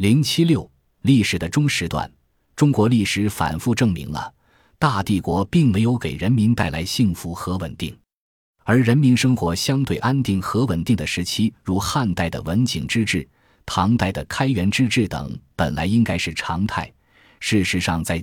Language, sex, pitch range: Chinese, male, 85-115 Hz